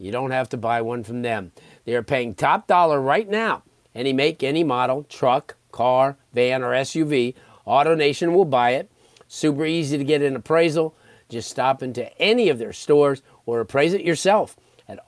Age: 50-69